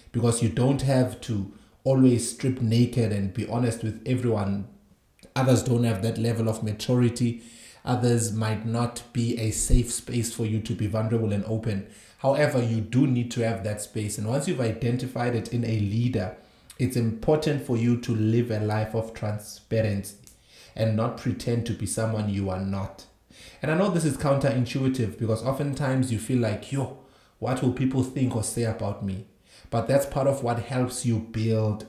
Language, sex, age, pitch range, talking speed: English, male, 30-49, 110-125 Hz, 185 wpm